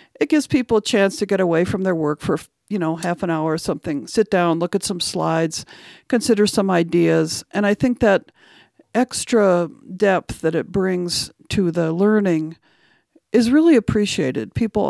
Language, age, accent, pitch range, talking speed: English, 50-69, American, 165-205 Hz, 175 wpm